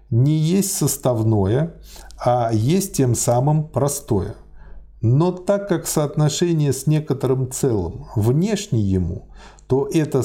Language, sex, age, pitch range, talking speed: Russian, male, 50-69, 110-160 Hz, 110 wpm